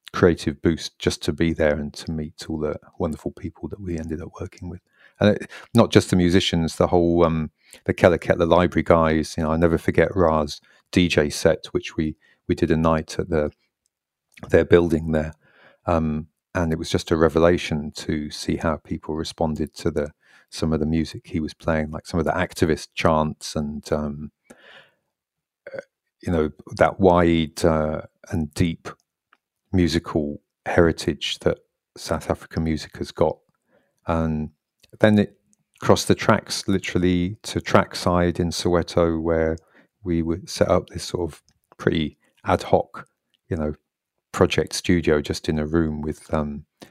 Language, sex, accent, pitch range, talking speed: English, male, British, 75-90 Hz, 165 wpm